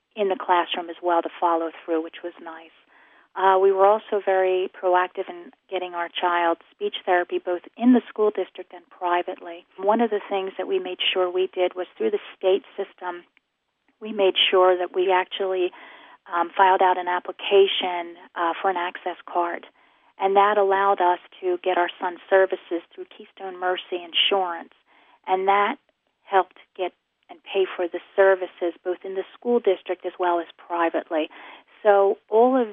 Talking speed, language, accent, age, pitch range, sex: 175 wpm, English, American, 30-49, 180-205 Hz, female